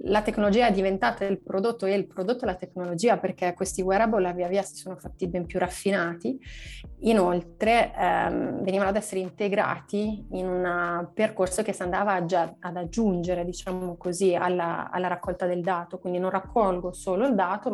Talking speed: 175 wpm